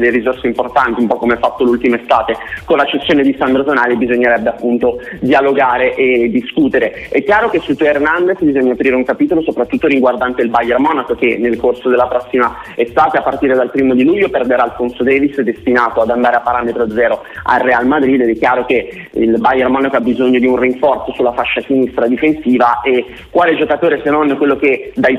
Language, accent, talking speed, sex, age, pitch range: Italian, native, 200 wpm, male, 30-49, 120-140 Hz